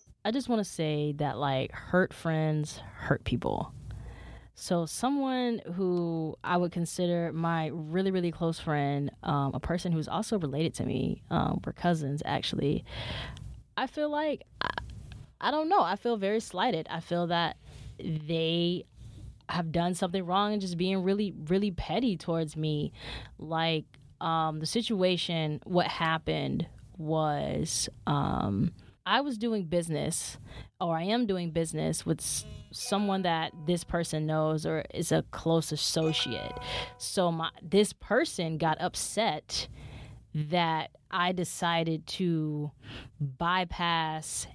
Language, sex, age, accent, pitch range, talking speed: English, female, 20-39, American, 150-180 Hz, 135 wpm